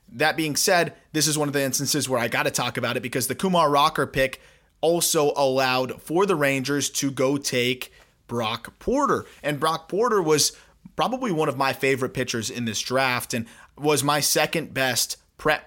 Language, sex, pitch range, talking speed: English, male, 130-155 Hz, 190 wpm